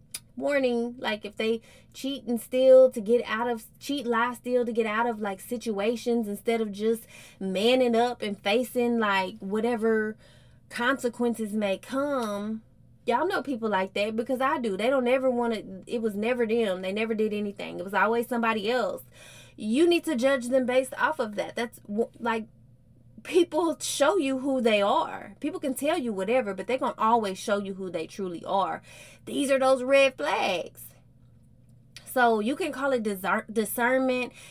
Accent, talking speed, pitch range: American, 175 wpm, 205-255 Hz